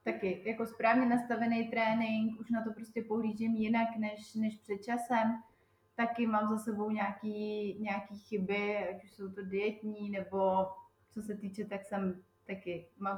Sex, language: female, Slovak